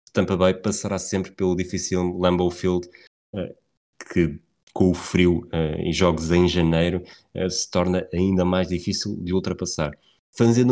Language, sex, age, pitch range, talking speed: Portuguese, male, 20-39, 95-110 Hz, 135 wpm